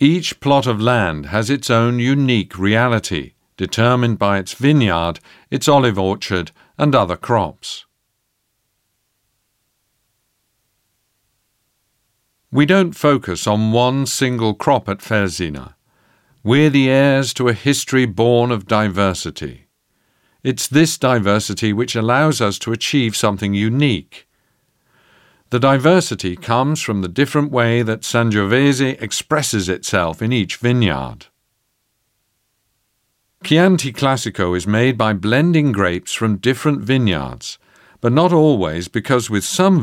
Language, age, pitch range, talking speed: French, 50-69, 100-130 Hz, 115 wpm